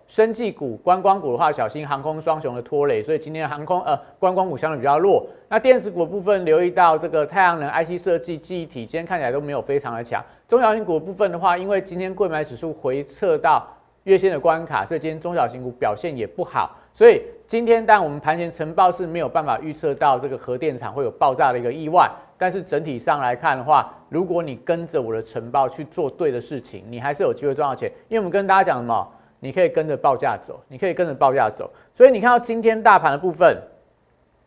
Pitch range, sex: 155-220 Hz, male